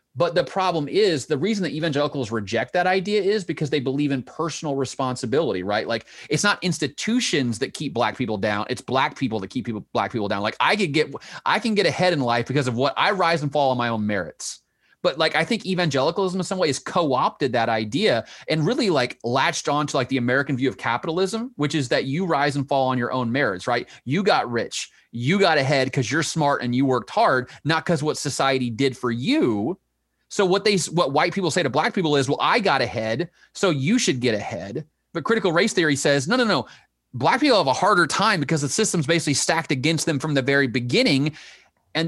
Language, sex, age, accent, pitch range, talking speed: English, male, 30-49, American, 130-170 Hz, 230 wpm